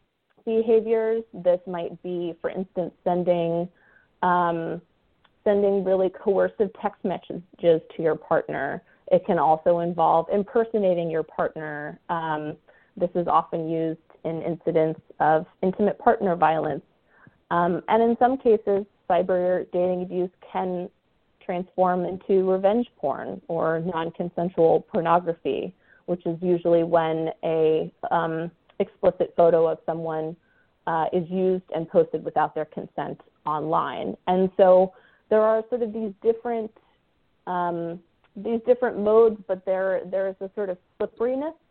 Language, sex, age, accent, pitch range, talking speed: English, female, 30-49, American, 170-200 Hz, 130 wpm